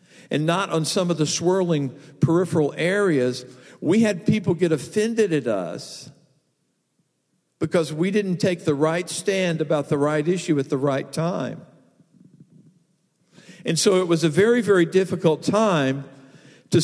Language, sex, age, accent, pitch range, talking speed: English, male, 50-69, American, 140-185 Hz, 145 wpm